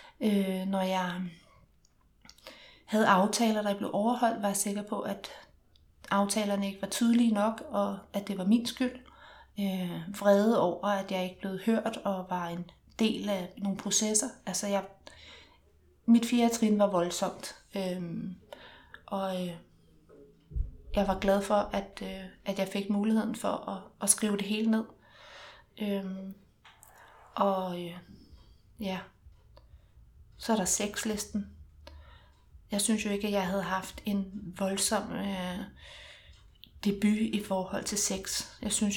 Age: 30-49